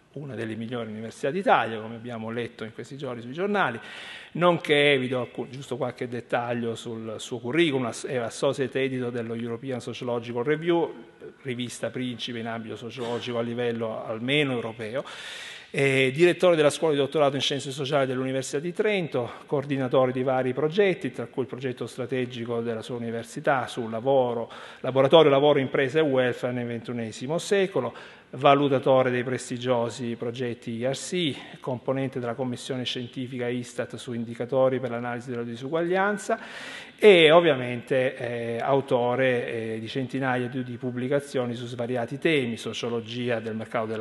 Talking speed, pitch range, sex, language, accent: 145 wpm, 120-145 Hz, male, Italian, native